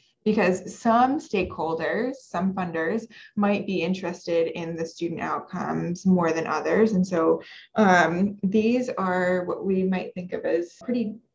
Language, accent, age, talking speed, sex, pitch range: English, American, 20-39, 145 wpm, female, 175-210 Hz